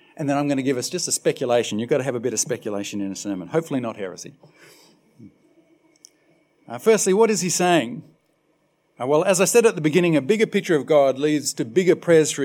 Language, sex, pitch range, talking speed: English, male, 155-205 Hz, 230 wpm